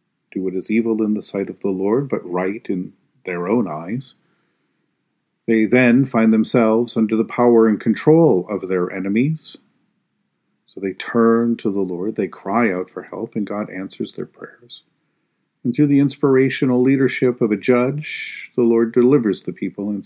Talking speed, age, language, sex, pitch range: 175 wpm, 40-59, English, male, 95-120 Hz